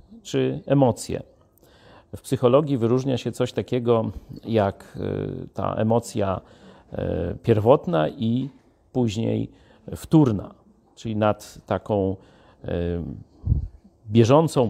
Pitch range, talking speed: 110-145 Hz, 80 wpm